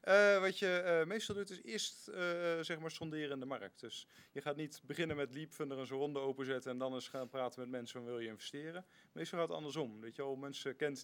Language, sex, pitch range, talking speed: Dutch, male, 120-140 Hz, 250 wpm